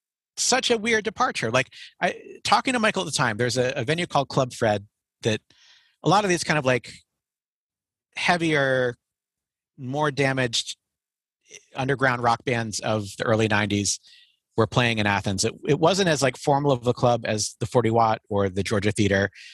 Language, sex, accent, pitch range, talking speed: English, male, American, 100-130 Hz, 180 wpm